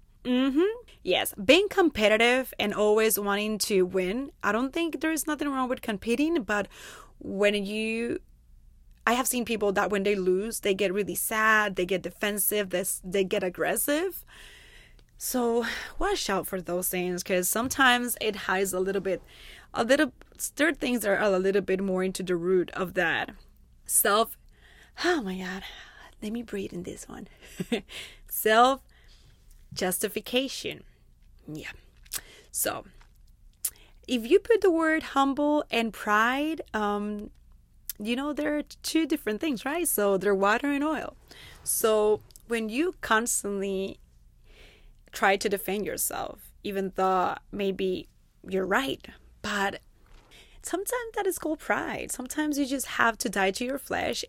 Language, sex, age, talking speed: English, female, 20-39, 145 wpm